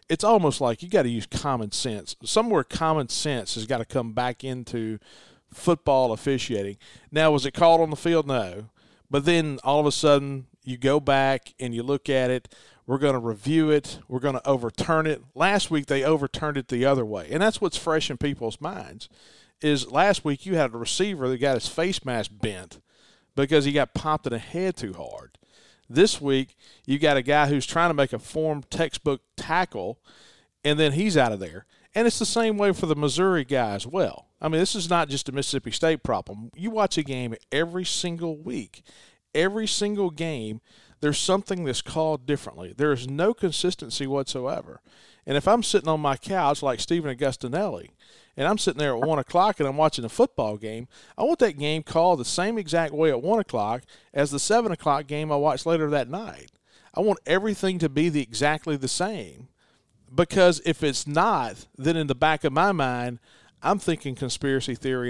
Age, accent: 40-59, American